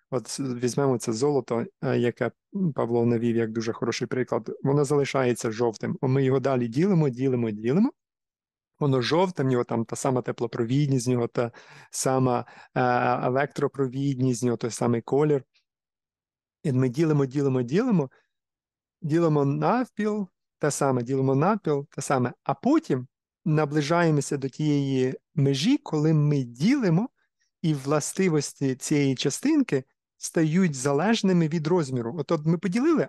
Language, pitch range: Ukrainian, 130-170 Hz